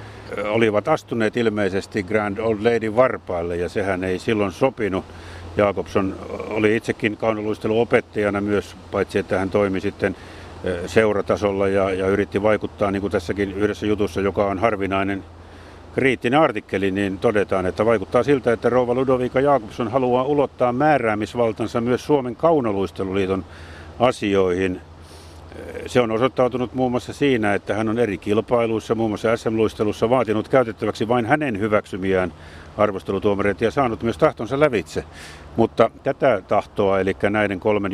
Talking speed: 135 wpm